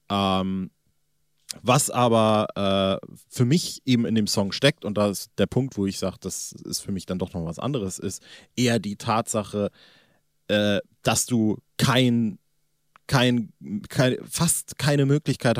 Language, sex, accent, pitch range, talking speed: German, male, German, 100-130 Hz, 155 wpm